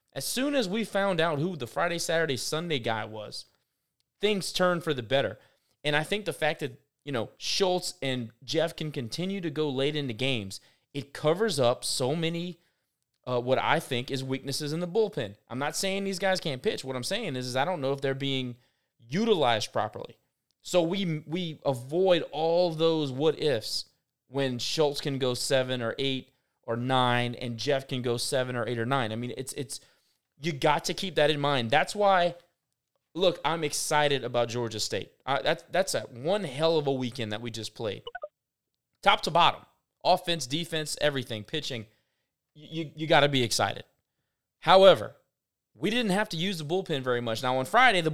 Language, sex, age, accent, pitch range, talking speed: English, male, 20-39, American, 130-170 Hz, 195 wpm